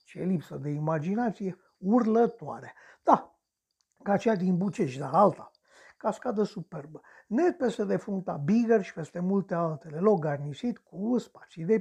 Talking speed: 135 wpm